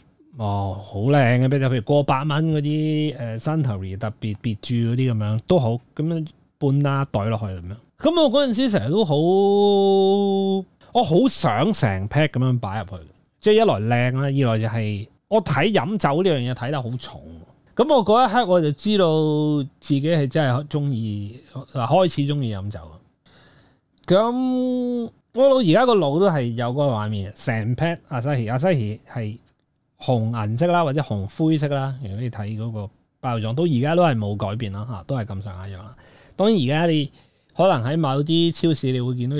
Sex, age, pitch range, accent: male, 20-39, 115-170 Hz, native